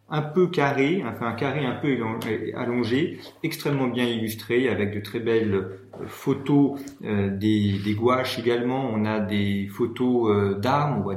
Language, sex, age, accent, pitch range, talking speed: French, male, 40-59, French, 105-145 Hz, 150 wpm